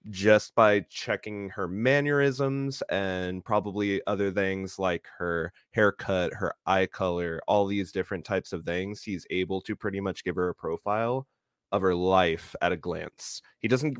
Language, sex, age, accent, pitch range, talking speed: English, male, 20-39, American, 90-105 Hz, 165 wpm